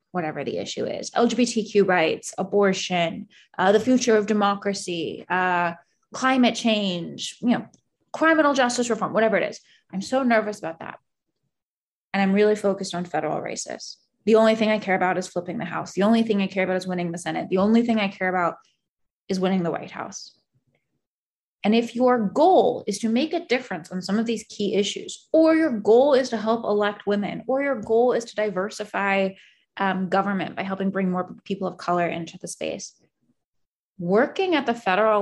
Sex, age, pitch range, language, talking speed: female, 20-39, 190-235 Hz, English, 190 wpm